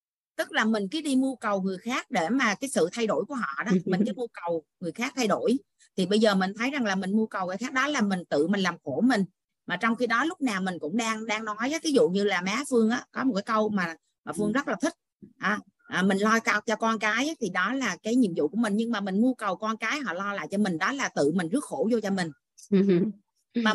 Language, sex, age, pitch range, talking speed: Vietnamese, female, 30-49, 190-240 Hz, 285 wpm